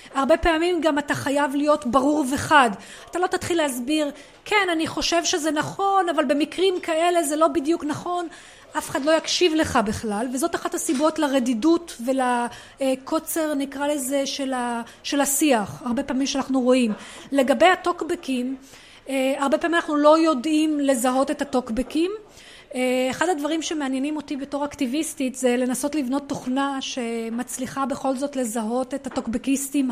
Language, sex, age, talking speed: Hebrew, female, 30-49, 140 wpm